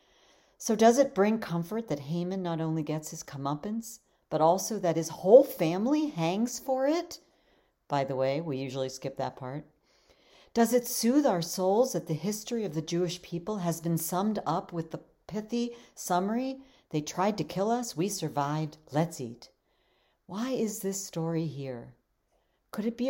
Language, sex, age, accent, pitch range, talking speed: English, female, 50-69, American, 160-220 Hz, 170 wpm